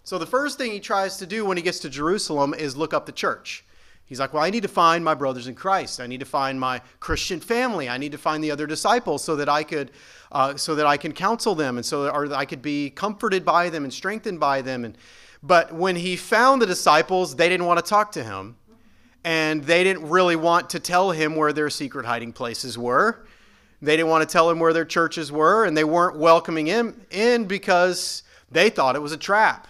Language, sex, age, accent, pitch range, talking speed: English, male, 30-49, American, 130-180 Hz, 240 wpm